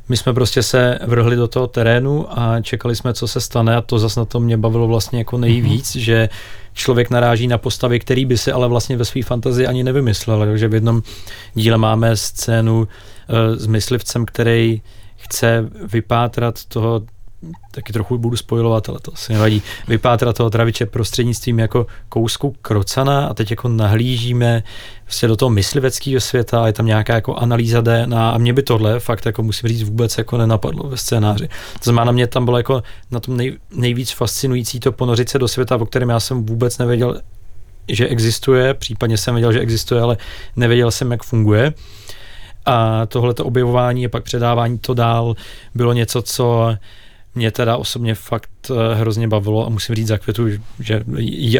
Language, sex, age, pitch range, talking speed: Czech, male, 30-49, 110-125 Hz, 175 wpm